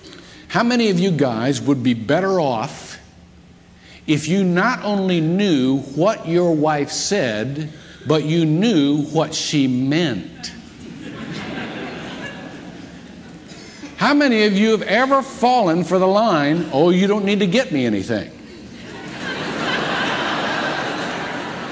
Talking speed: 115 wpm